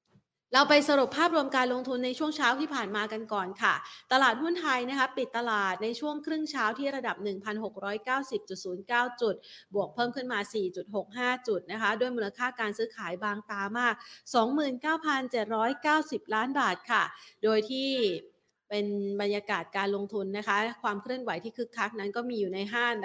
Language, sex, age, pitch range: Thai, female, 30-49, 200-245 Hz